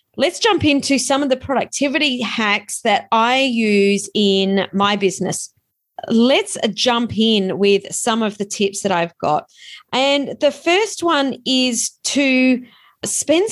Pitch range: 195-245 Hz